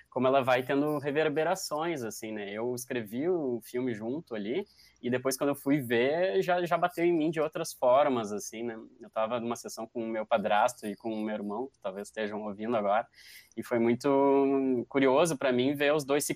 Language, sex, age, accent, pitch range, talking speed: Portuguese, male, 20-39, Brazilian, 115-140 Hz, 210 wpm